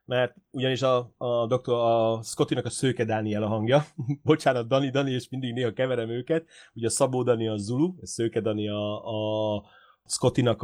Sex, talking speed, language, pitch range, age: male, 180 wpm, Hungarian, 110-130 Hz, 30-49